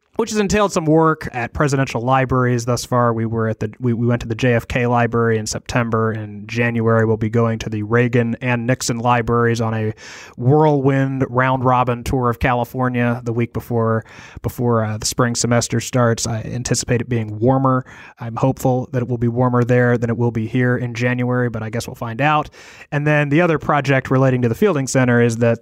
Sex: male